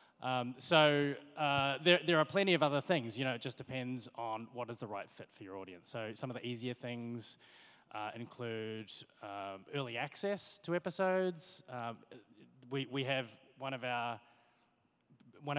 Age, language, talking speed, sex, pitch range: 20-39, English, 175 wpm, male, 115-145 Hz